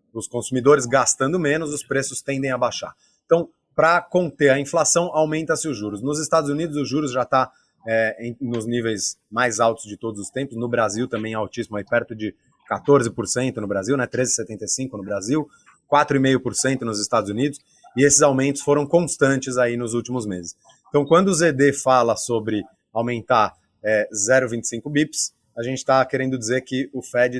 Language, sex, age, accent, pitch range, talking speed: Portuguese, male, 30-49, Brazilian, 115-140 Hz, 175 wpm